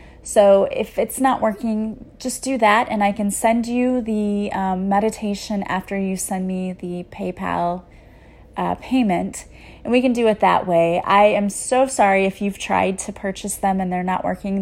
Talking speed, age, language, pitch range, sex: 185 wpm, 30-49, English, 180-215 Hz, female